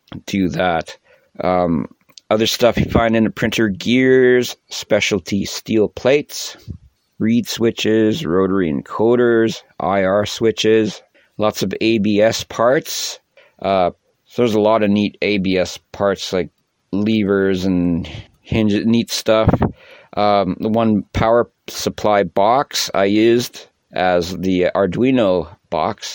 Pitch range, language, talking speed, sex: 95-110 Hz, English, 115 wpm, male